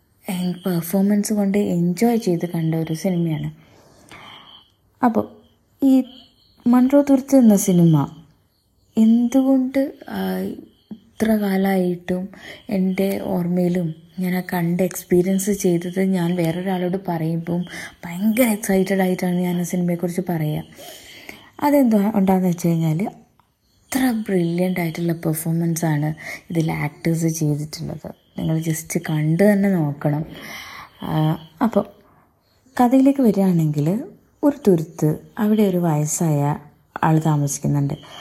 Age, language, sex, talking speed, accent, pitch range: 20-39, Malayalam, female, 90 wpm, native, 165-210 Hz